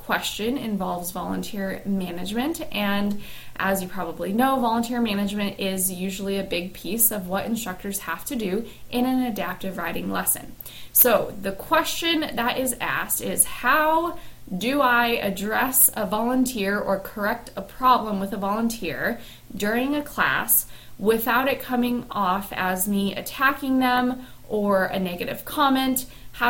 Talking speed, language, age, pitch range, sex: 145 wpm, English, 20-39, 190-245 Hz, female